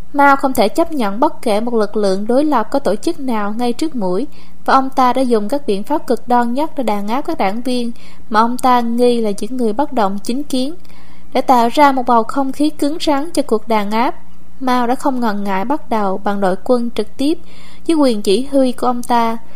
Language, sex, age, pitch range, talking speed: Vietnamese, female, 20-39, 215-270 Hz, 240 wpm